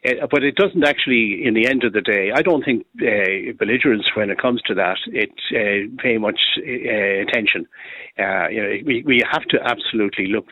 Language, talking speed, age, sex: English, 205 wpm, 60-79, male